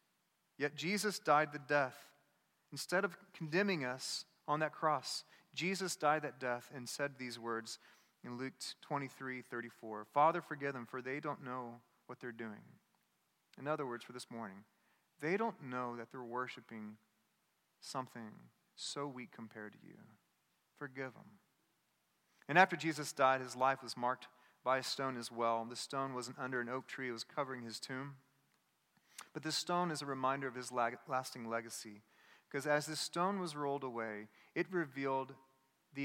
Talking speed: 165 wpm